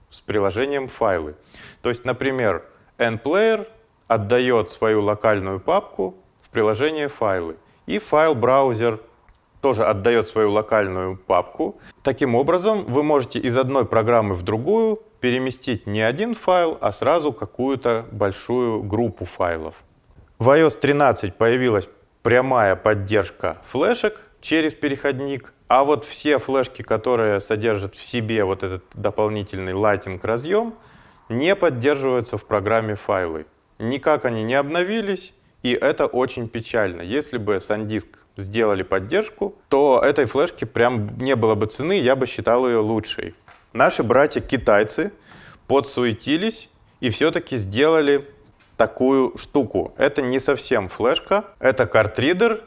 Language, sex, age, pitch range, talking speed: Russian, male, 30-49, 110-145 Hz, 120 wpm